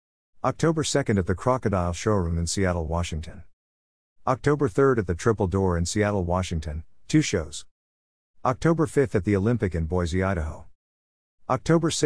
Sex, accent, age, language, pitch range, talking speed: male, American, 50-69, English, 85-115 Hz, 145 wpm